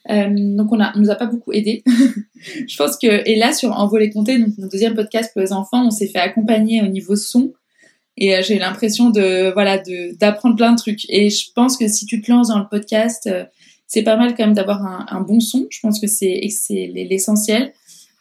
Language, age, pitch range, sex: French, 20-39, 200-230 Hz, female